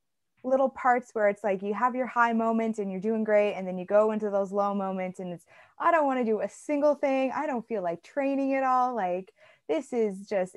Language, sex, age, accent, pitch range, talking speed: English, female, 20-39, American, 190-250 Hz, 240 wpm